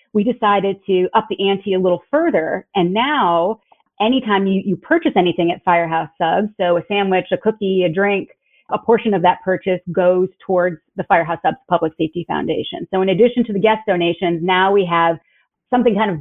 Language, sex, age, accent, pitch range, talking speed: English, female, 30-49, American, 175-215 Hz, 195 wpm